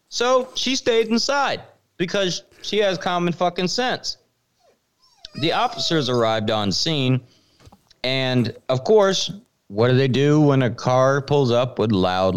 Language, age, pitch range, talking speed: English, 30-49, 120-170 Hz, 140 wpm